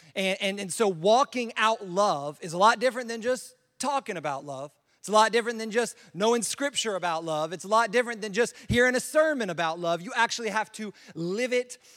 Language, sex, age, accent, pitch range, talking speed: English, male, 30-49, American, 175-230 Hz, 215 wpm